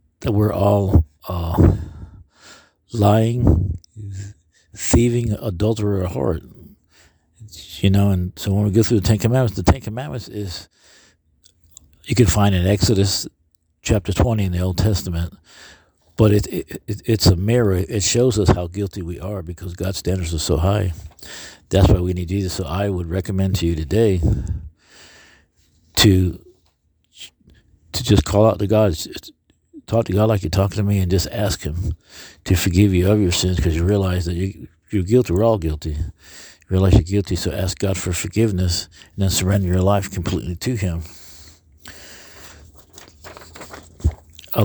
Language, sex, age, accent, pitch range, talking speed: English, male, 50-69, American, 85-100 Hz, 160 wpm